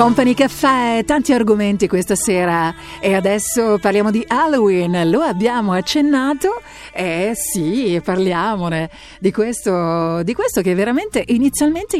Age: 50-69